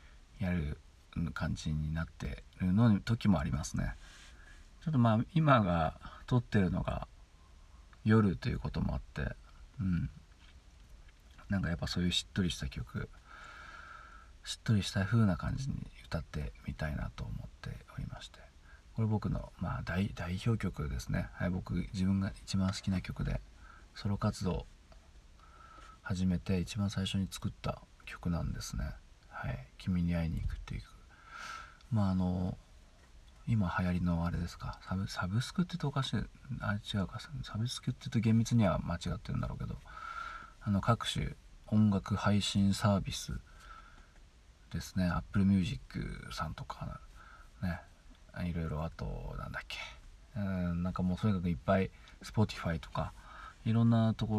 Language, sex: Japanese, male